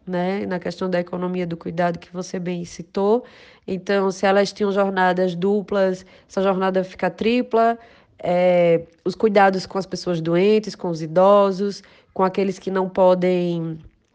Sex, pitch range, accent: female, 180-215 Hz, Brazilian